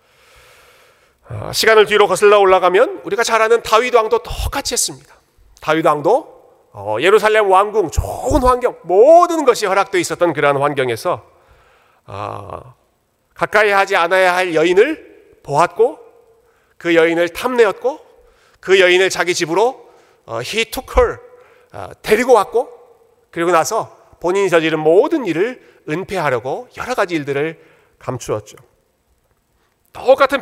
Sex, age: male, 40-59